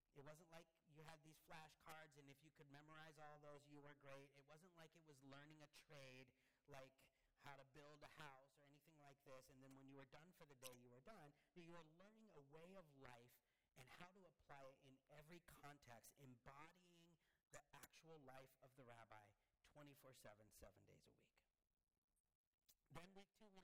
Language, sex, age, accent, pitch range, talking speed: English, male, 40-59, American, 135-165 Hz, 200 wpm